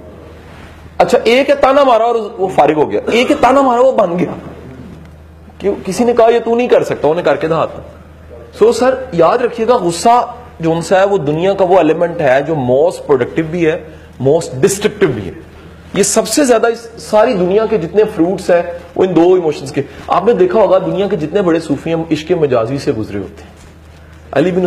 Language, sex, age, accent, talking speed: English, male, 40-59, Indian, 165 wpm